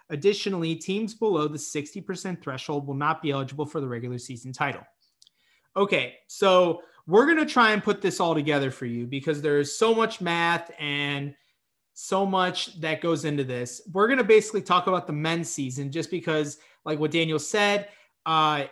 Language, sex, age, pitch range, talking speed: English, male, 30-49, 145-190 Hz, 185 wpm